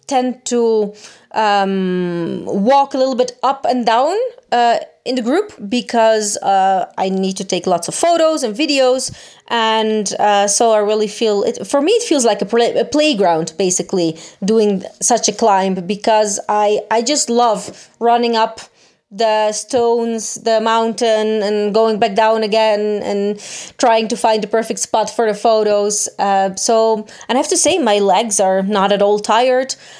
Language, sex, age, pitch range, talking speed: Italian, female, 20-39, 205-250 Hz, 170 wpm